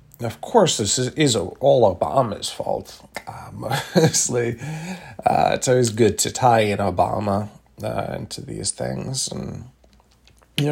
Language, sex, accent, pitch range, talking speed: English, male, American, 110-135 Hz, 135 wpm